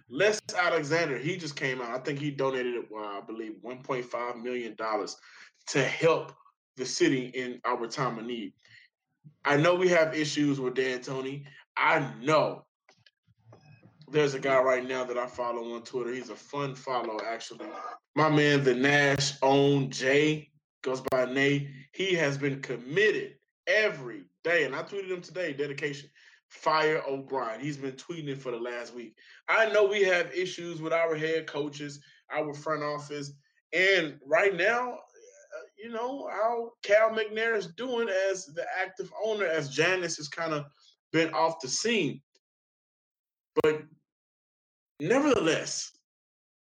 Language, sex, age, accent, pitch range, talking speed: English, male, 20-39, American, 130-175 Hz, 150 wpm